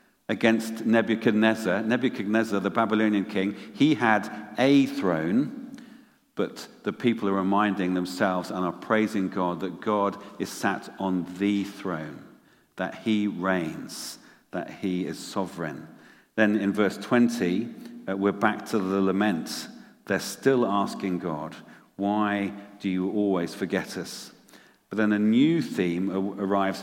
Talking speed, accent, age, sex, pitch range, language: 130 wpm, British, 50-69, male, 100-125 Hz, English